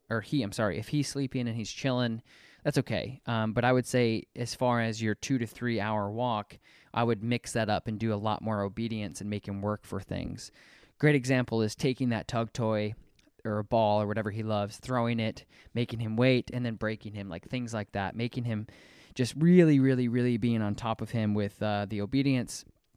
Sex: male